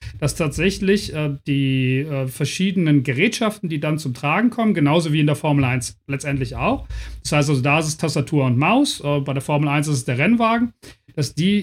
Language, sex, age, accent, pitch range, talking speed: German, male, 40-59, German, 145-185 Hz, 205 wpm